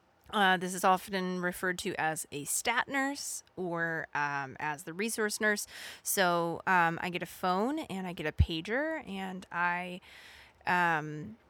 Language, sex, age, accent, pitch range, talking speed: English, female, 20-39, American, 170-210 Hz, 155 wpm